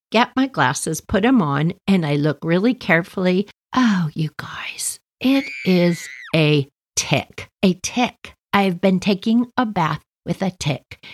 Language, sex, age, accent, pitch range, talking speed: English, female, 50-69, American, 160-220 Hz, 150 wpm